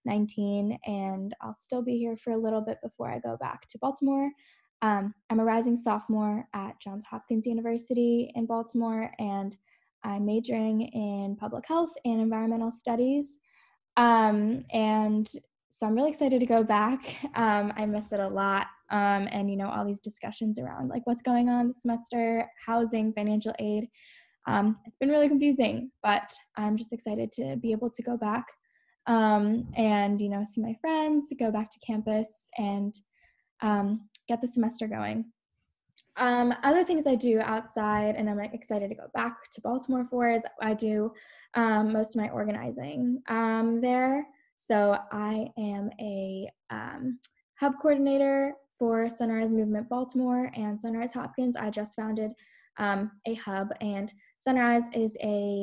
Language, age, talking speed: English, 10-29, 160 wpm